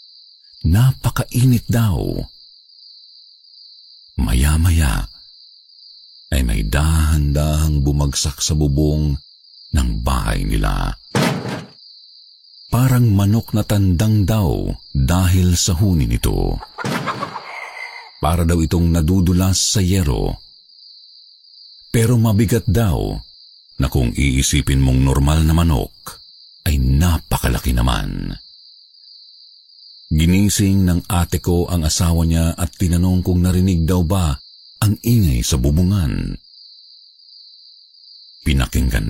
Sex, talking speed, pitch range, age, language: male, 90 wpm, 75-105 Hz, 50-69, Filipino